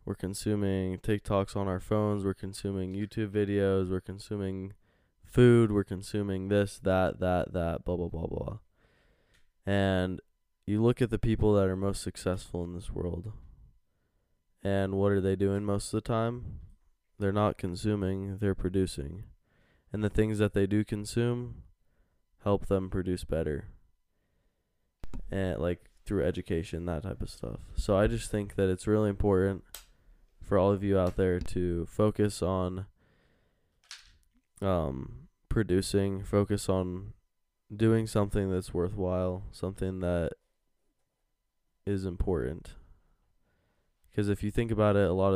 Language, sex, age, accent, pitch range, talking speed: English, male, 20-39, American, 90-105 Hz, 140 wpm